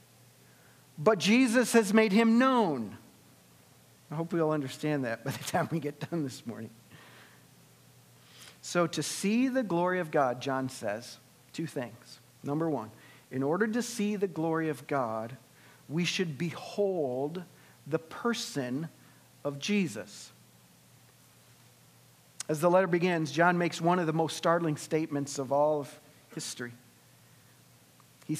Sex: male